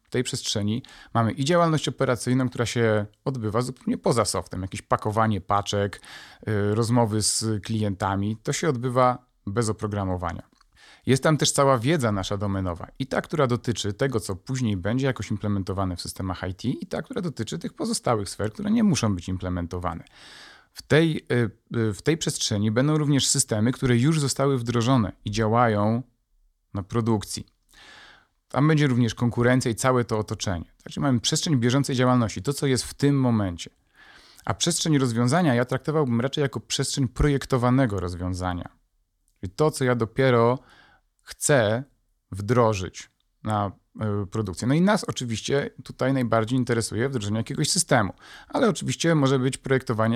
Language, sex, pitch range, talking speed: Polish, male, 105-135 Hz, 150 wpm